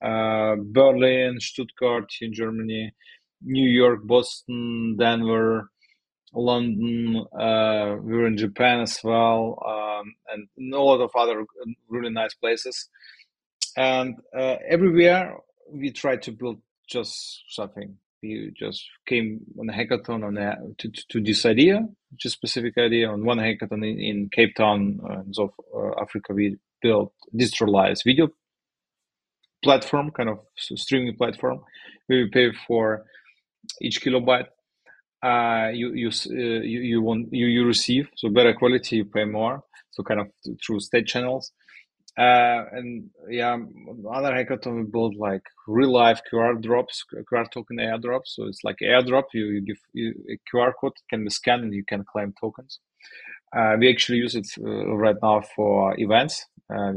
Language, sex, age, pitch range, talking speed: English, male, 30-49, 110-125 Hz, 155 wpm